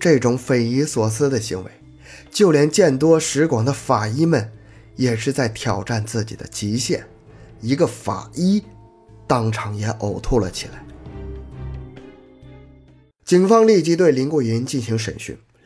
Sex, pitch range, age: male, 110-160 Hz, 20-39